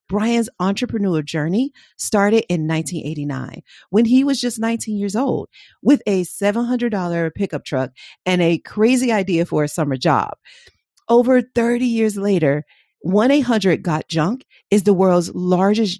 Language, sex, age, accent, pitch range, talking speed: English, female, 40-59, American, 170-230 Hz, 130 wpm